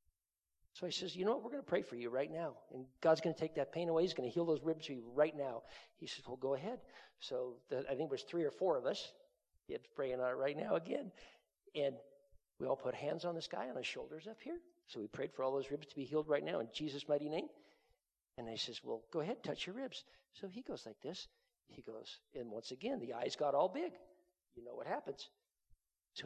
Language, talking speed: English, 255 wpm